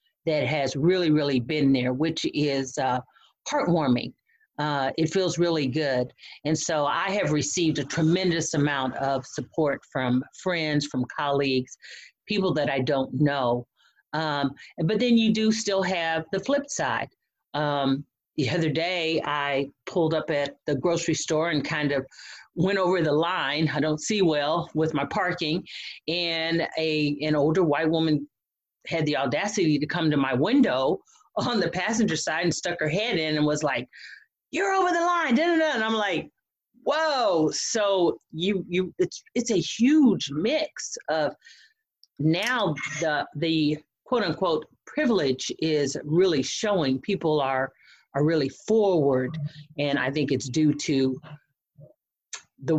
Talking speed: 150 wpm